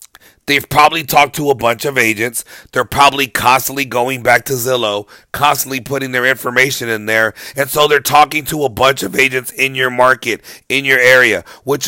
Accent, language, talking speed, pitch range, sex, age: American, English, 185 wpm, 115-135 Hz, male, 30-49